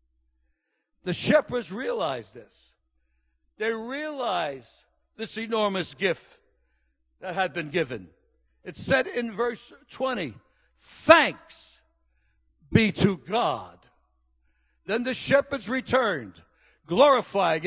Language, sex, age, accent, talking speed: English, male, 60-79, American, 90 wpm